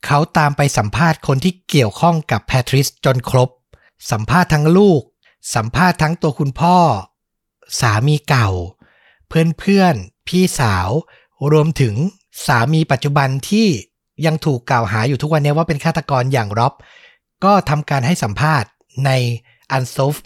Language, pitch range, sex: Thai, 125-160 Hz, male